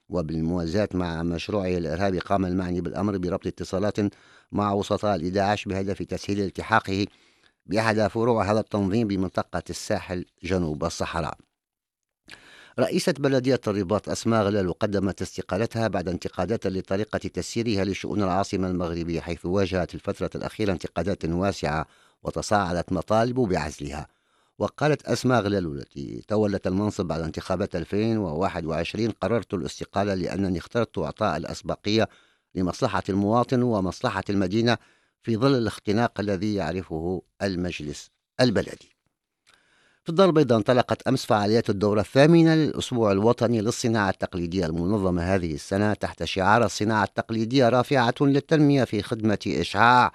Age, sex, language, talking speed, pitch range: 50-69, male, English, 115 wpm, 90-110 Hz